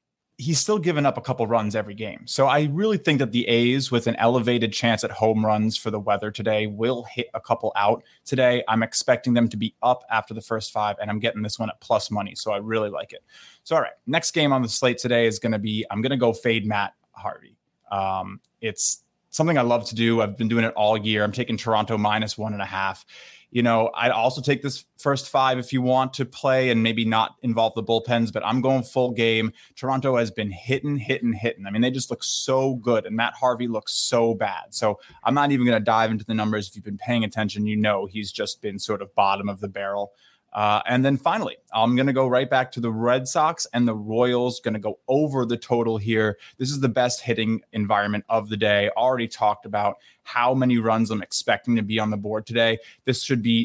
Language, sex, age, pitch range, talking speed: English, male, 20-39, 110-125 Hz, 240 wpm